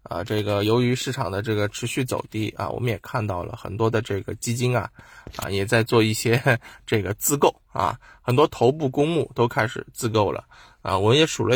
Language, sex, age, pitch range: Chinese, male, 20-39, 105-125 Hz